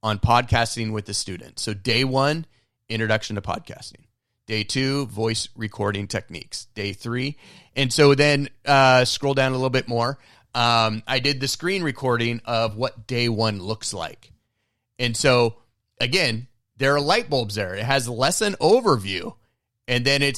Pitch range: 110-135 Hz